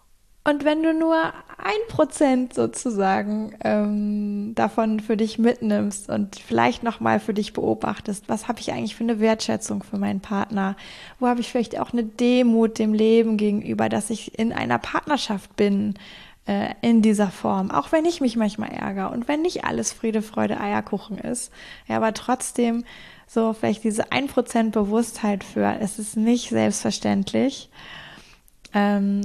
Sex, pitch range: female, 205-240 Hz